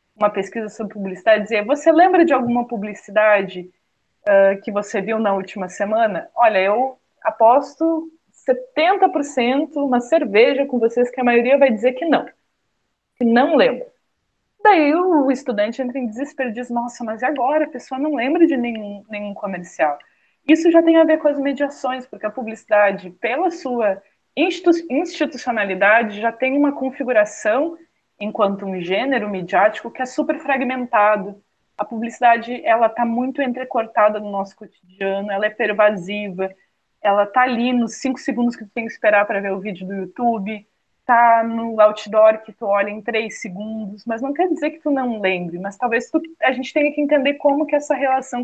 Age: 20-39